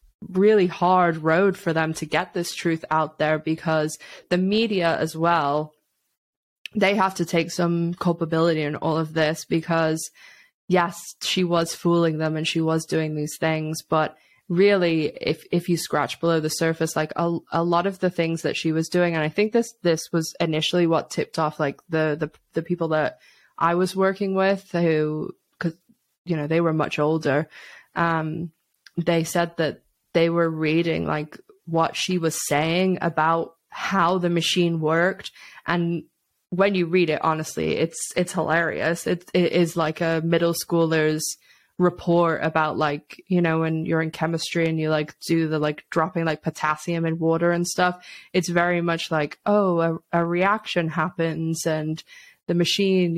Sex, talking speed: female, 170 wpm